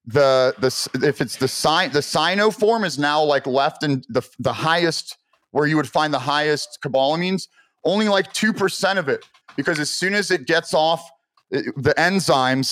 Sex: male